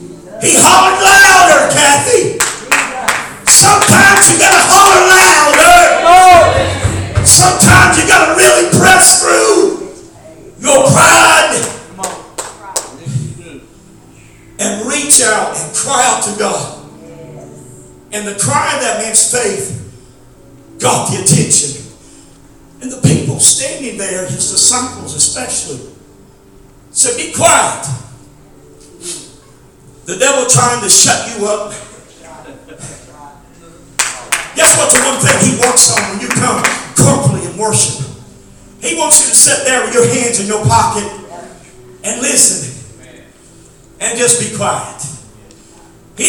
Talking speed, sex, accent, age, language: 110 wpm, male, American, 50-69, English